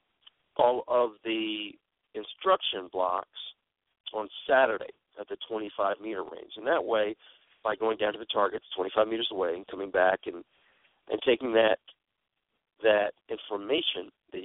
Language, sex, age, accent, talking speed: English, male, 40-59, American, 150 wpm